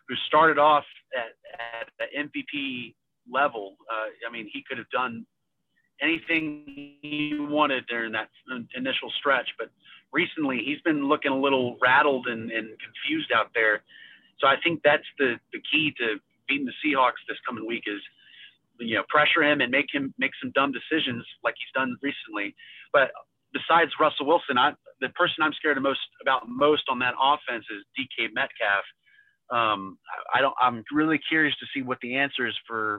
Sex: male